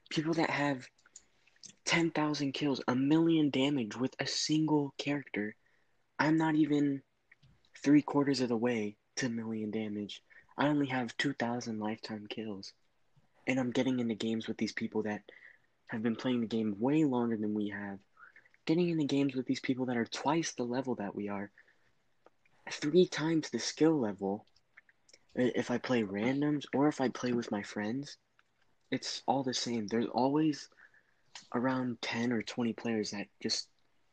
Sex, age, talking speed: male, 20-39, 160 wpm